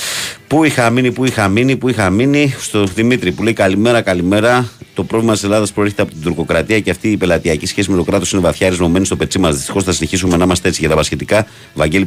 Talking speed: 240 wpm